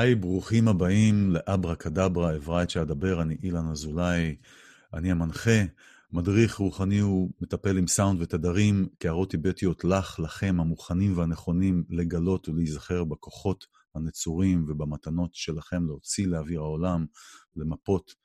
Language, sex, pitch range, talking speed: English, male, 85-100 Hz, 100 wpm